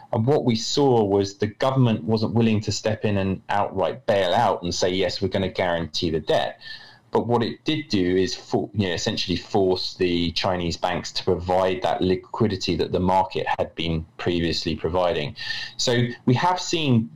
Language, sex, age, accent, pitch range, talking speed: English, male, 30-49, British, 95-120 Hz, 180 wpm